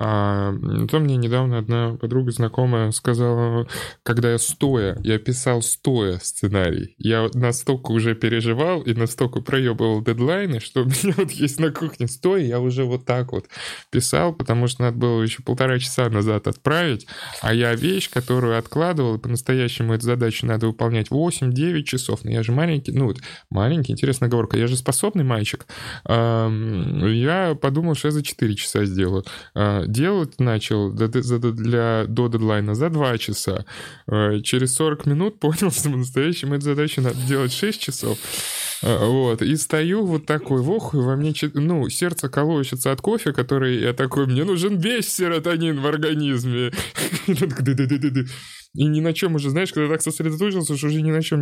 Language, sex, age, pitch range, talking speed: Russian, male, 20-39, 115-150 Hz, 160 wpm